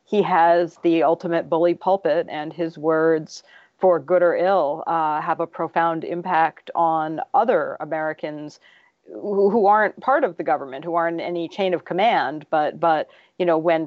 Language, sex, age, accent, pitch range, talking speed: English, female, 40-59, American, 160-185 Hz, 170 wpm